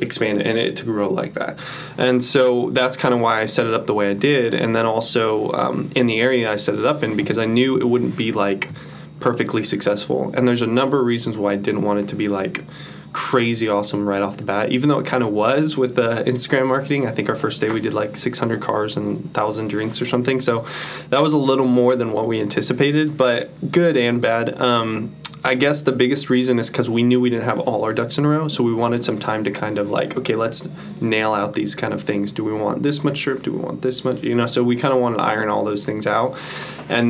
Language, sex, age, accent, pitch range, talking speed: English, male, 20-39, American, 110-130 Hz, 265 wpm